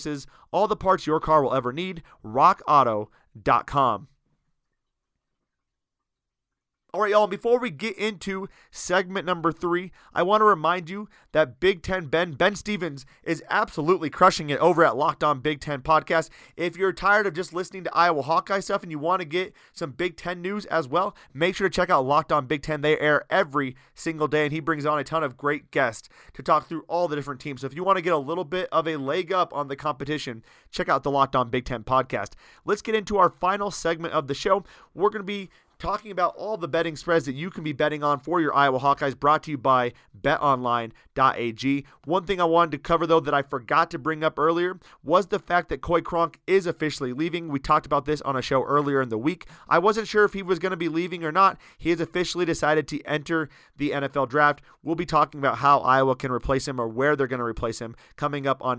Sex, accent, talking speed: male, American, 230 wpm